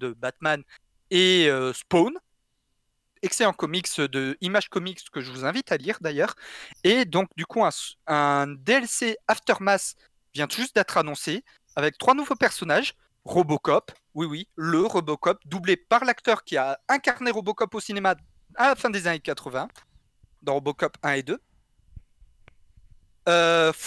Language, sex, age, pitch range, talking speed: French, male, 30-49, 150-225 Hz, 150 wpm